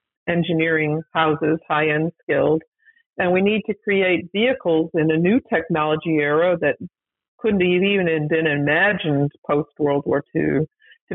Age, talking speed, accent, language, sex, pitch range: 50-69, 140 wpm, American, English, female, 155-185 Hz